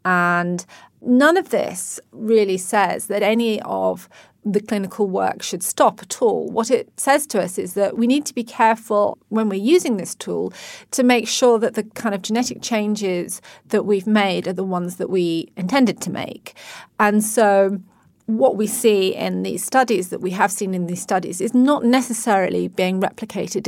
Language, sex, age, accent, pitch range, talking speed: English, female, 30-49, British, 190-235 Hz, 185 wpm